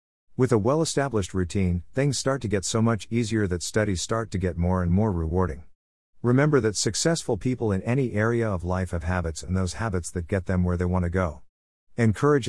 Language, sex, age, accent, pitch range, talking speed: English, male, 50-69, American, 90-115 Hz, 205 wpm